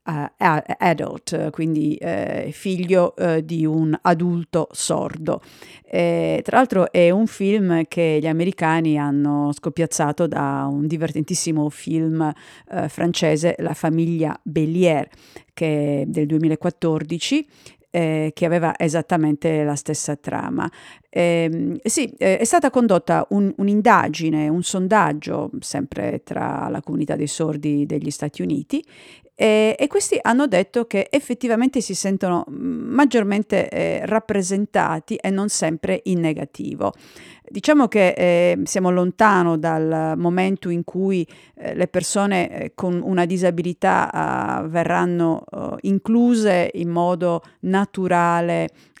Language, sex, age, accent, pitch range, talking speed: Italian, female, 50-69, native, 160-195 Hz, 120 wpm